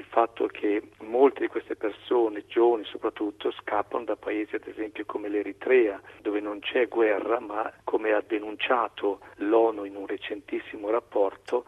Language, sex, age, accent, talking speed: Italian, male, 50-69, native, 145 wpm